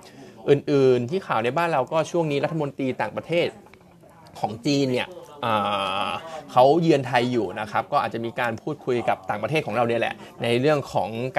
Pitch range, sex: 120-150 Hz, male